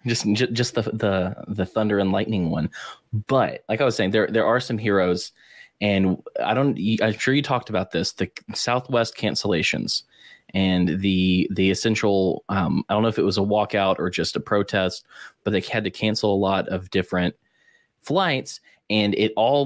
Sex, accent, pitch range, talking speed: male, American, 95-115 Hz, 185 wpm